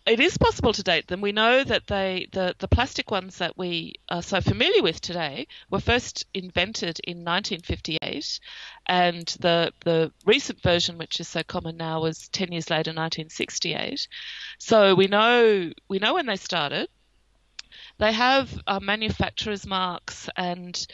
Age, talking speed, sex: 30-49, 160 wpm, female